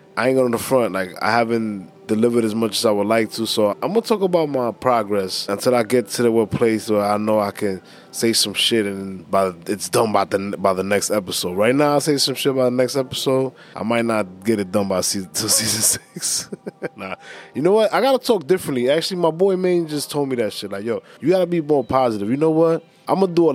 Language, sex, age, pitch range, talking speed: English, male, 20-39, 105-135 Hz, 270 wpm